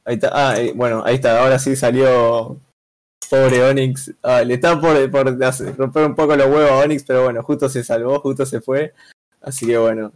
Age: 20-39